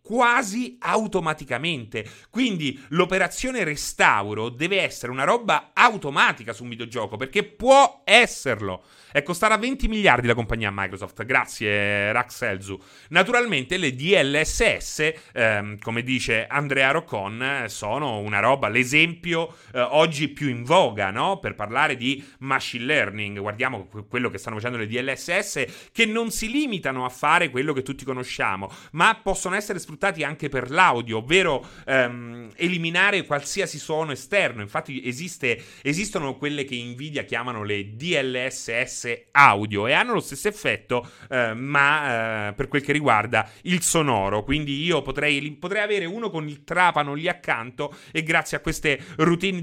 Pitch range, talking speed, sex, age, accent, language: 120-170 Hz, 145 wpm, male, 30-49, native, Italian